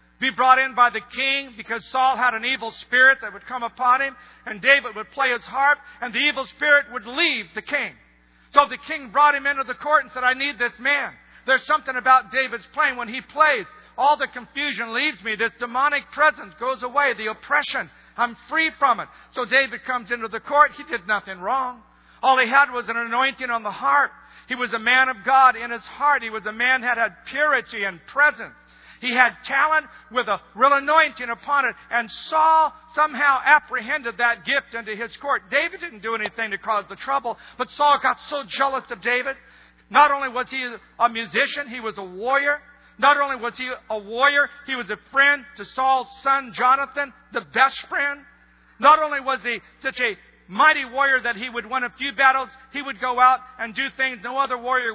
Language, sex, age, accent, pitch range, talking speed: English, male, 50-69, American, 235-280 Hz, 210 wpm